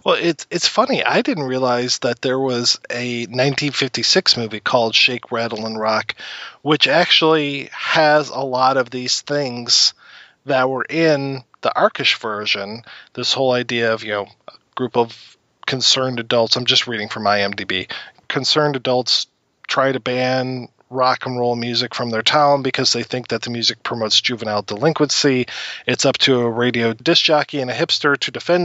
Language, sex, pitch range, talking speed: English, male, 120-145 Hz, 175 wpm